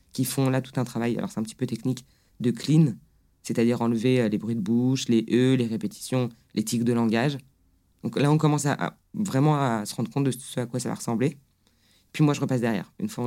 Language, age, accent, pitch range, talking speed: French, 20-39, French, 115-140 Hz, 240 wpm